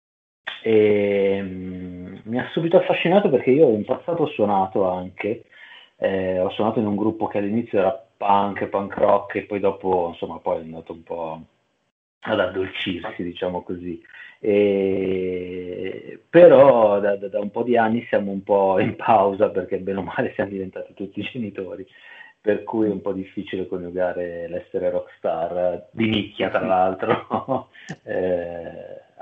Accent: native